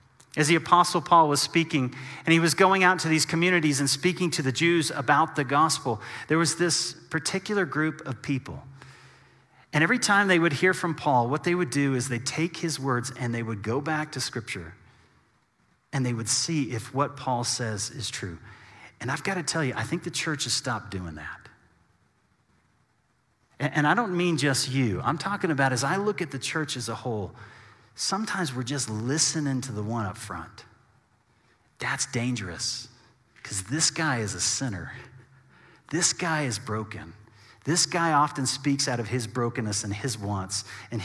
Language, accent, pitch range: English, American, 115-155 Hz